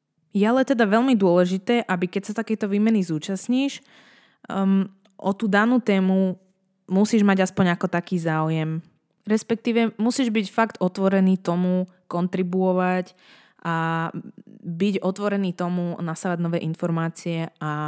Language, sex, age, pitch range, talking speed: Slovak, female, 20-39, 175-215 Hz, 125 wpm